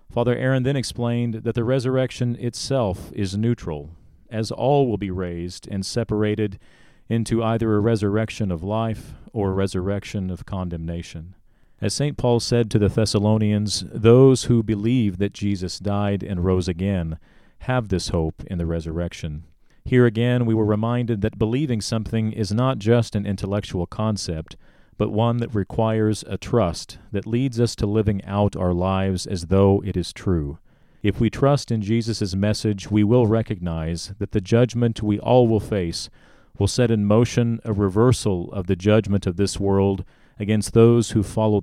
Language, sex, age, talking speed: English, male, 40-59, 165 wpm